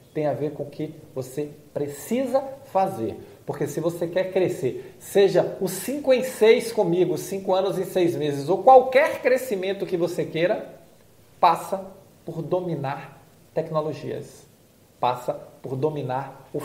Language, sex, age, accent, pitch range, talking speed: Portuguese, male, 40-59, Brazilian, 135-195 Hz, 140 wpm